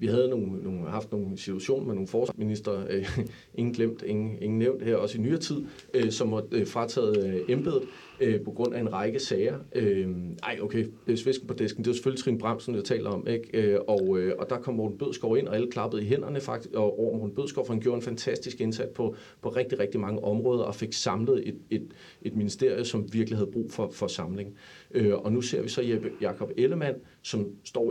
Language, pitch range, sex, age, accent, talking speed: Danish, 105-130 Hz, male, 40-59, native, 220 wpm